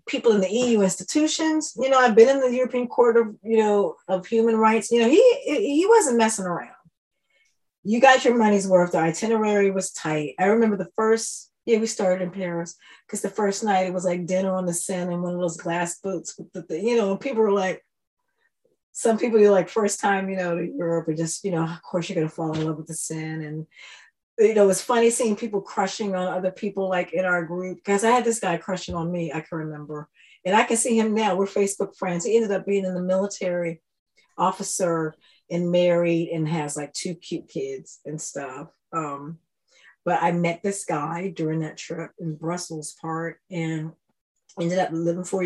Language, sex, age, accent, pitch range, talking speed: English, female, 30-49, American, 170-215 Hz, 220 wpm